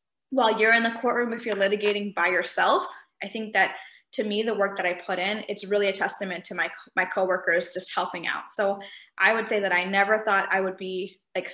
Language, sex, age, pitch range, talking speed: English, female, 20-39, 195-240 Hz, 235 wpm